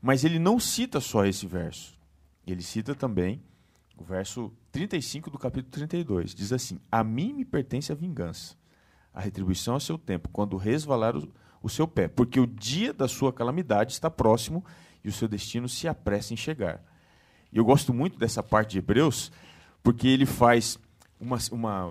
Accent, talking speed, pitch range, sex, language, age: Brazilian, 175 wpm, 95-140 Hz, male, Portuguese, 40-59